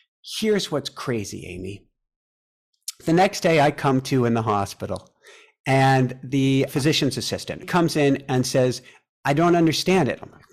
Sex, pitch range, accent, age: male, 115-155 Hz, American, 50-69